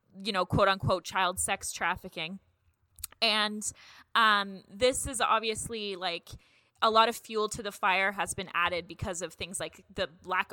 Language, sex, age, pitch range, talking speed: English, female, 20-39, 185-215 Hz, 165 wpm